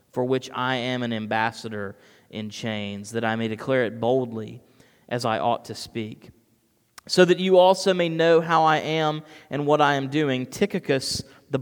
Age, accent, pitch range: 30-49, American, 115-135 Hz